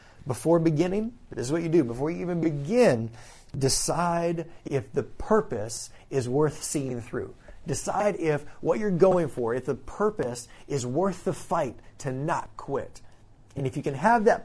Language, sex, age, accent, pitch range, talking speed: English, male, 30-49, American, 120-165 Hz, 170 wpm